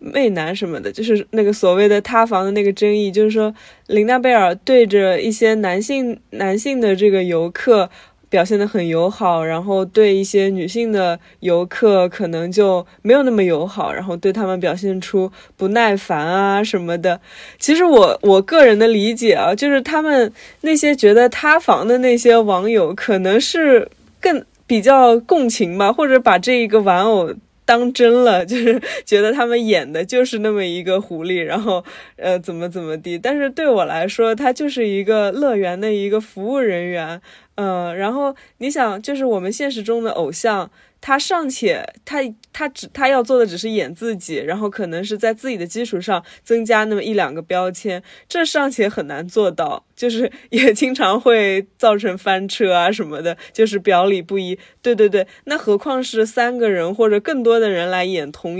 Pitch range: 190-240 Hz